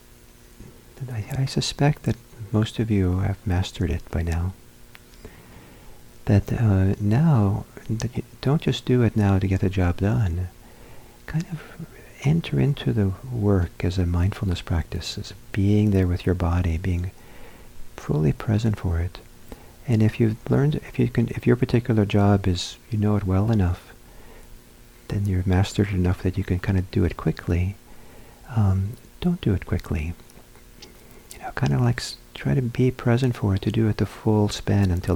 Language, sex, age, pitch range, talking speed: English, male, 50-69, 90-115 Hz, 165 wpm